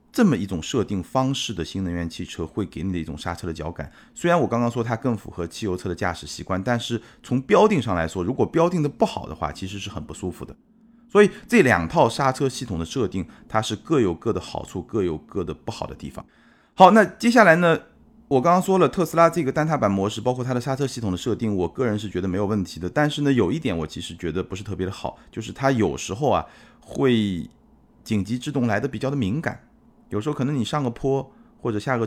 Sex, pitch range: male, 90-130 Hz